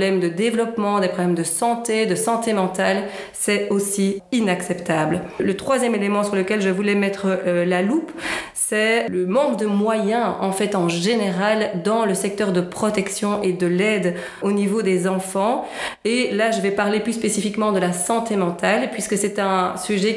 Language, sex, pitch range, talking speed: French, female, 185-215 Hz, 175 wpm